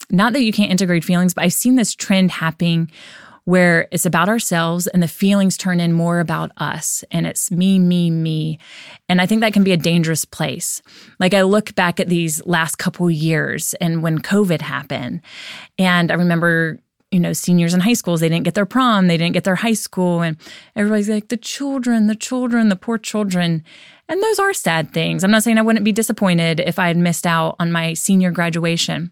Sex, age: female, 20-39